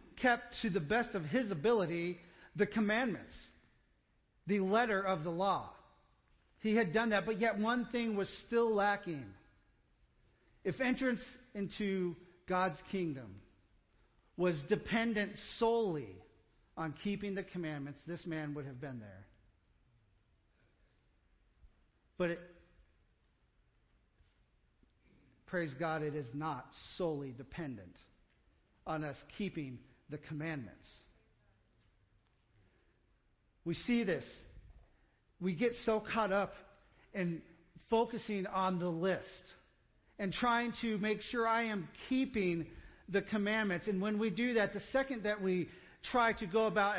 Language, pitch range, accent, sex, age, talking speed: English, 150-220 Hz, American, male, 50-69, 120 wpm